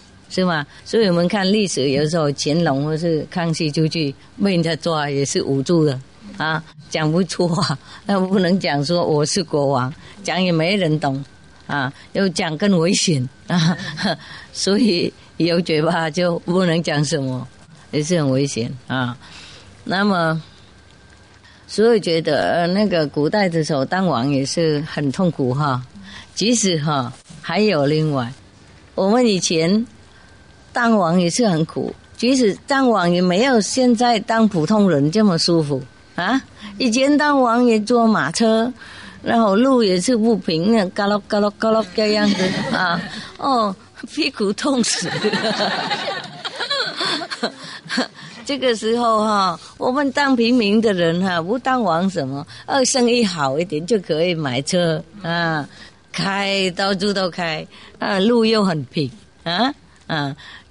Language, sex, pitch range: English, female, 150-215 Hz